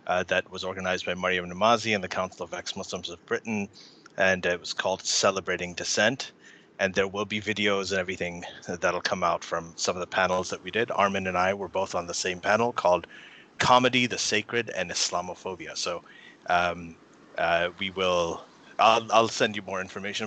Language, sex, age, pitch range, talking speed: English, male, 30-49, 90-110 Hz, 190 wpm